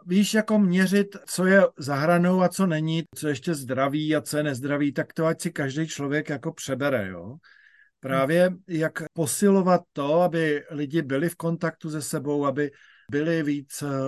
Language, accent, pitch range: Czech, native, 150-180 Hz